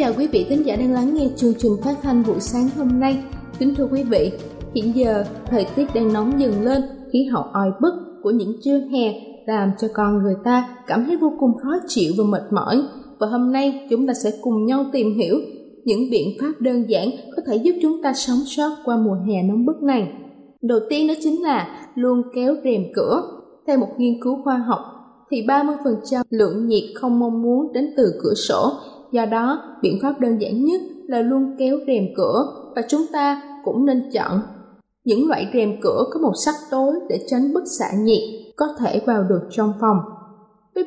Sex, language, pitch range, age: female, Vietnamese, 220-280 Hz, 20-39